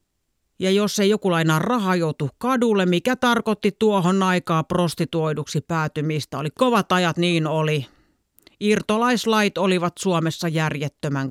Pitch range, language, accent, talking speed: 150-195 Hz, Finnish, native, 120 wpm